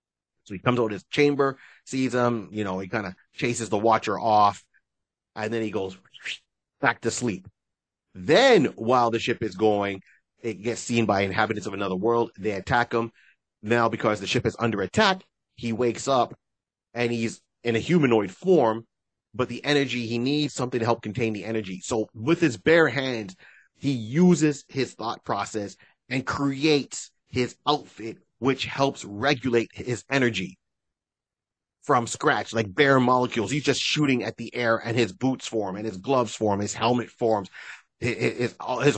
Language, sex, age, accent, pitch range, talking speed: English, male, 30-49, American, 110-125 Hz, 175 wpm